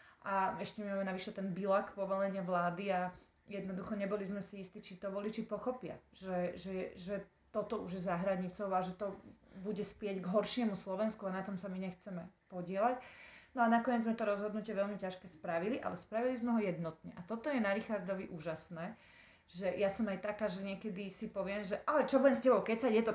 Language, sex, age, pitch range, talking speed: Slovak, female, 30-49, 190-220 Hz, 200 wpm